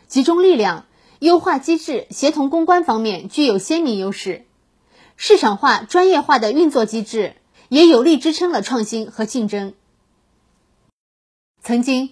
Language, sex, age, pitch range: Chinese, female, 20-39, 220-320 Hz